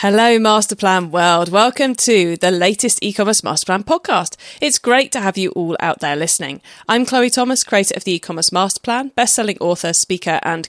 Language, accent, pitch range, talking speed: English, British, 170-235 Hz, 175 wpm